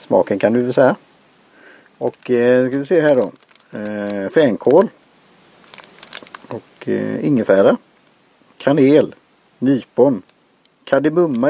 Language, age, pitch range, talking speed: Swedish, 50-69, 110-145 Hz, 110 wpm